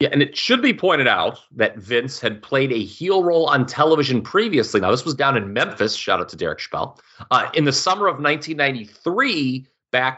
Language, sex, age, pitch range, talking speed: English, male, 30-49, 115-185 Hz, 205 wpm